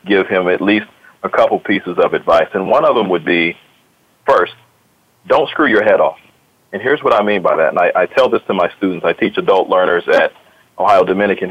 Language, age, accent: English, 40-59, American